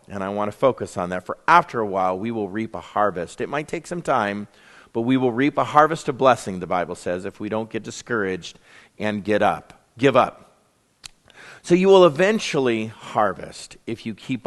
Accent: American